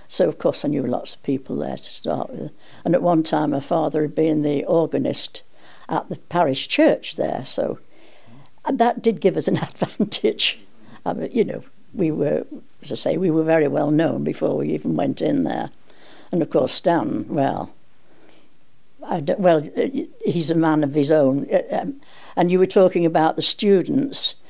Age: 60-79